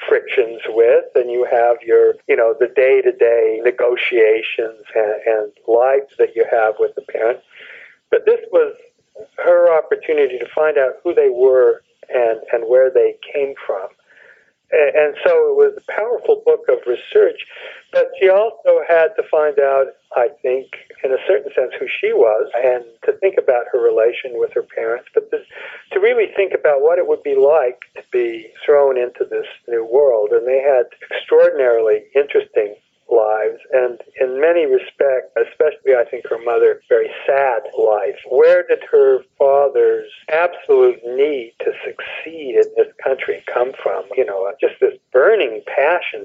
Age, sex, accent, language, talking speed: 50-69, male, American, English, 165 wpm